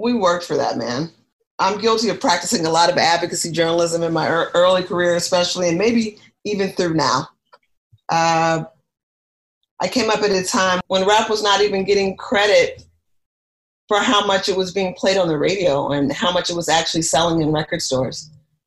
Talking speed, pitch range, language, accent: 185 wpm, 160-185 Hz, English, American